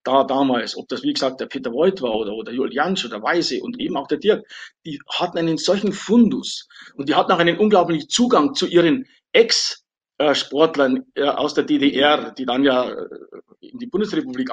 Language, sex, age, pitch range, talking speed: German, male, 50-69, 145-230 Hz, 180 wpm